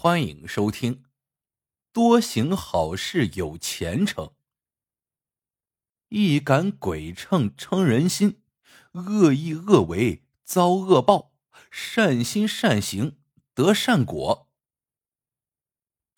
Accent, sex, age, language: native, male, 50-69, Chinese